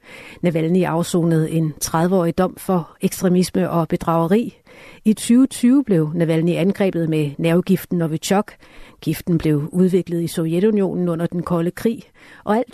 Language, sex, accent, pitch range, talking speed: Danish, female, native, 165-200 Hz, 130 wpm